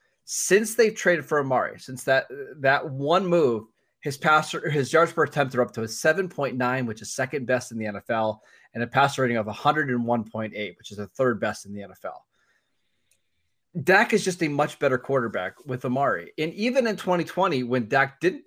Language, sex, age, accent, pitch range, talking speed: English, male, 20-39, American, 120-165 Hz, 190 wpm